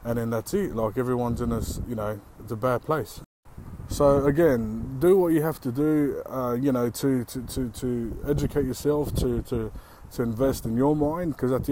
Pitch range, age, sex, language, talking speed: 115-135 Hz, 20-39, male, English, 210 wpm